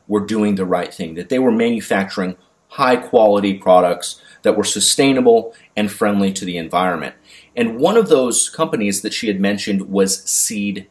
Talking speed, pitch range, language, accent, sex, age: 170 wpm, 95-135 Hz, English, American, male, 30-49